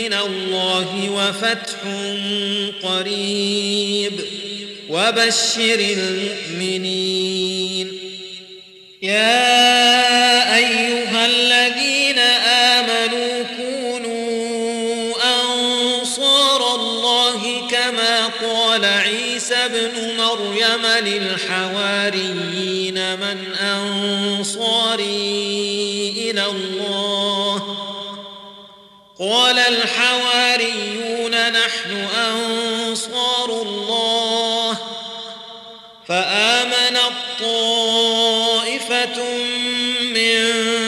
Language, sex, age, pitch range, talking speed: Arabic, male, 40-59, 200-230 Hz, 45 wpm